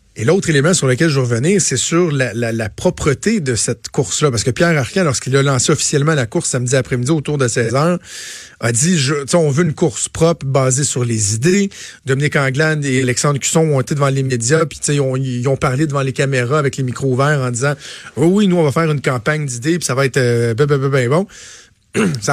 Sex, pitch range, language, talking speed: male, 130-165 Hz, French, 245 wpm